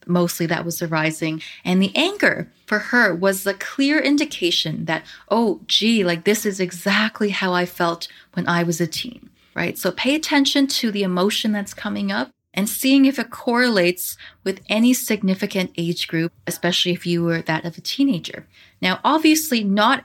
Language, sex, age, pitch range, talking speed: English, female, 20-39, 180-240 Hz, 175 wpm